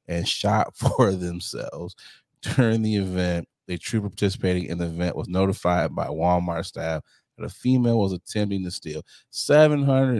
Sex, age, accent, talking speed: male, 30-49, American, 160 wpm